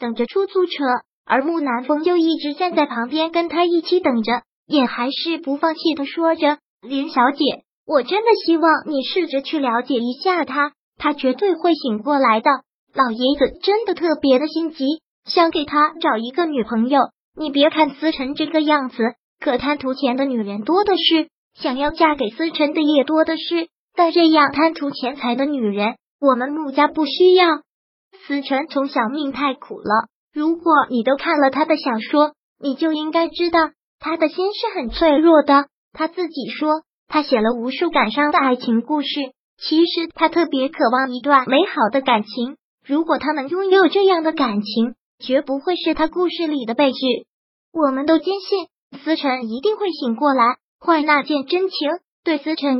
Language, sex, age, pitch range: Chinese, male, 20-39, 265-330 Hz